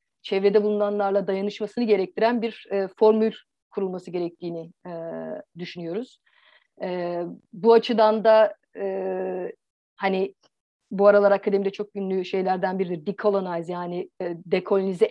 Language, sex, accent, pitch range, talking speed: Turkish, female, native, 185-220 Hz, 110 wpm